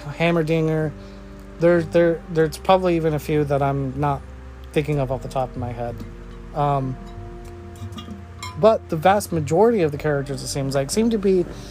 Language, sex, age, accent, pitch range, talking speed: English, male, 30-49, American, 120-165 Hz, 170 wpm